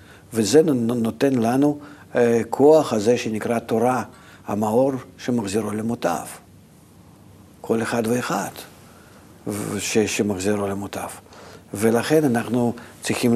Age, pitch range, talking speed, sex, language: 50-69, 110-135 Hz, 90 wpm, male, Hebrew